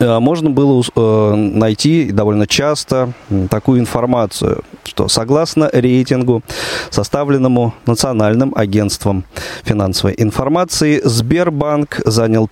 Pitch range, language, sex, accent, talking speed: 105-135 Hz, Russian, male, native, 80 wpm